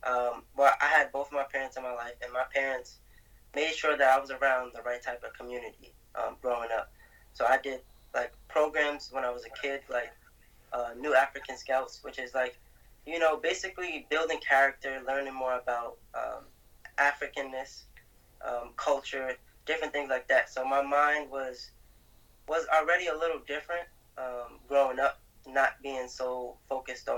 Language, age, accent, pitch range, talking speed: English, 20-39, American, 125-145 Hz, 170 wpm